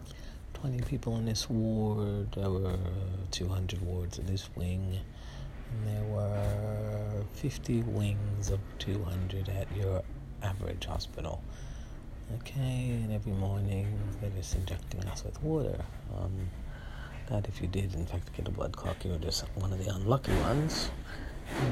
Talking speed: 150 wpm